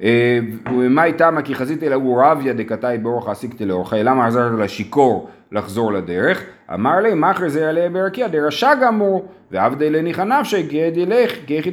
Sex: male